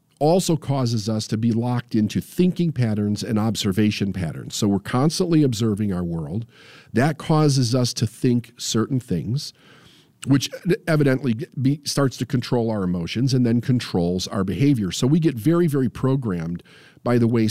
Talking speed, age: 160 wpm, 50-69